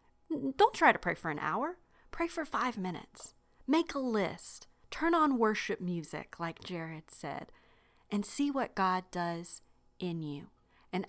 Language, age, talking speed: English, 40-59, 155 wpm